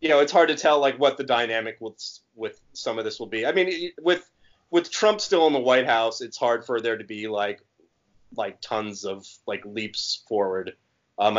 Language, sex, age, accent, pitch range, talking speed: English, male, 30-49, American, 110-140 Hz, 220 wpm